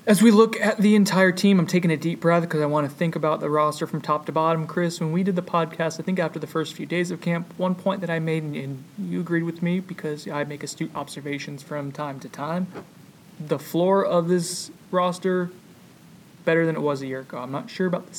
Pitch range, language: 150-180 Hz, English